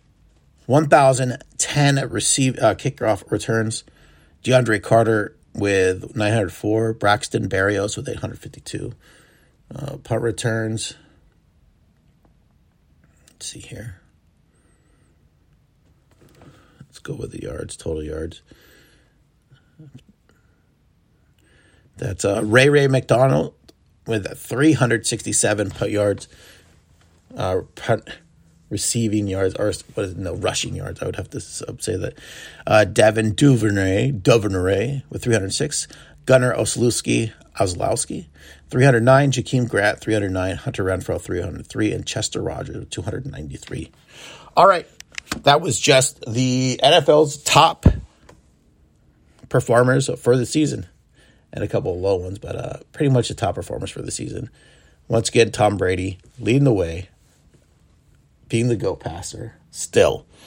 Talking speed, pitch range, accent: 120 wpm, 95-130 Hz, American